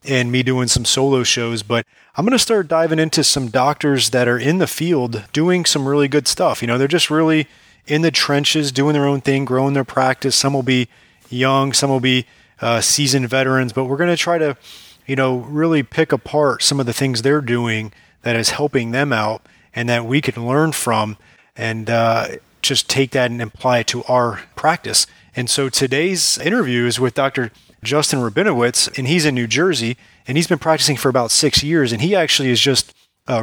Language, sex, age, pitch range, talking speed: English, male, 30-49, 120-145 Hz, 210 wpm